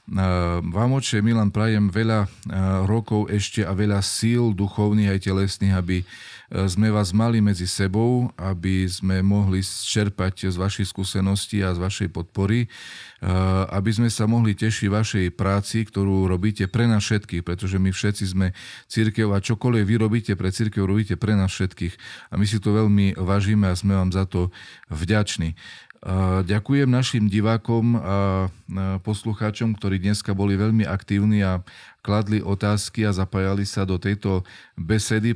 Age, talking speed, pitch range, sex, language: 40-59, 150 wpm, 95-110 Hz, male, Slovak